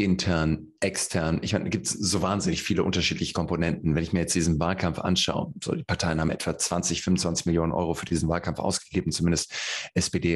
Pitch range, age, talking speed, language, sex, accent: 85-95 Hz, 30-49, 190 wpm, German, male, German